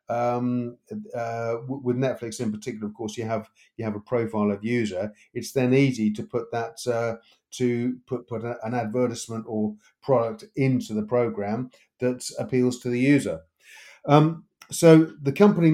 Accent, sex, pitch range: British, male, 110-135 Hz